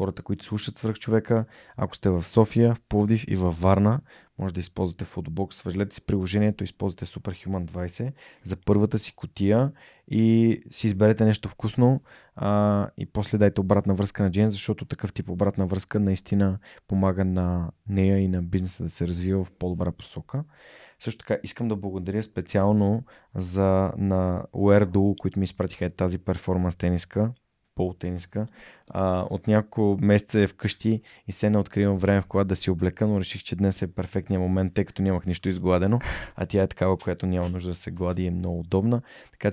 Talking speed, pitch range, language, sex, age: 180 wpm, 95-105 Hz, Bulgarian, male, 20-39